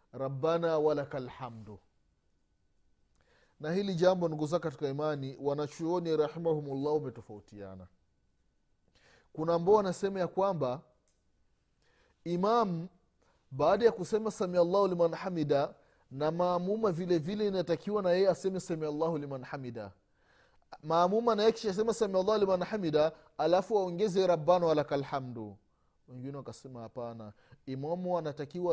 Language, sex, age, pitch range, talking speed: Swahili, male, 30-49, 130-185 Hz, 120 wpm